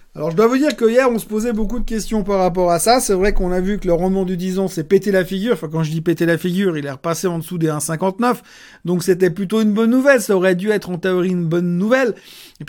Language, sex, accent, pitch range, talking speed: French, male, French, 170-210 Hz, 295 wpm